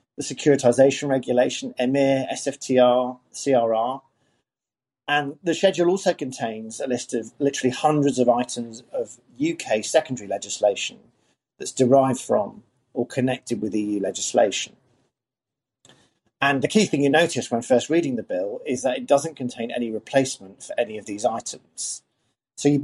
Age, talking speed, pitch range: 40-59, 145 wpm, 120-150 Hz